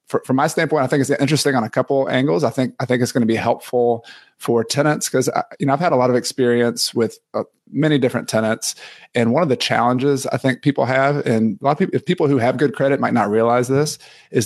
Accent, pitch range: American, 115-130 Hz